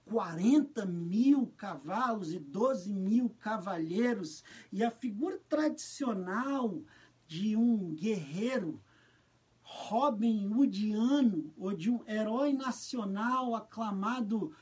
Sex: male